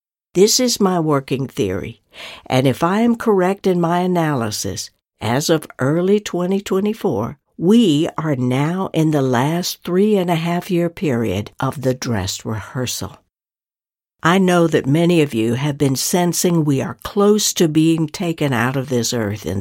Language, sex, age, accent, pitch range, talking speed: English, female, 60-79, American, 130-185 Hz, 150 wpm